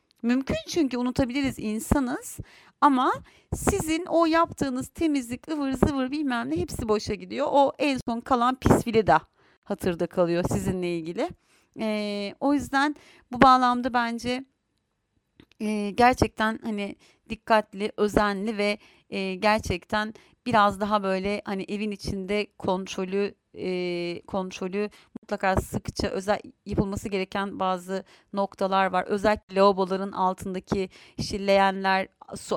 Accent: native